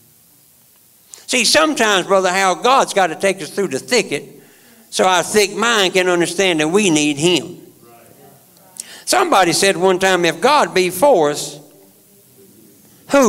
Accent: American